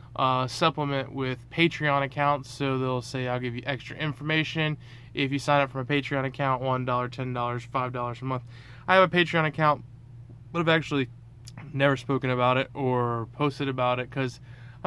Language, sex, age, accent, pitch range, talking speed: English, male, 20-39, American, 120-145 Hz, 185 wpm